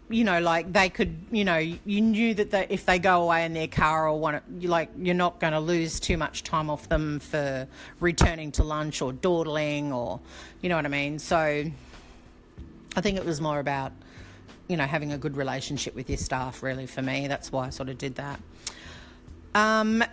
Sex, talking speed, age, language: female, 210 wpm, 40-59, English